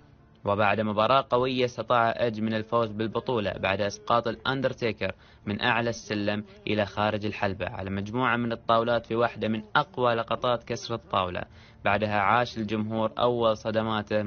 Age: 20-39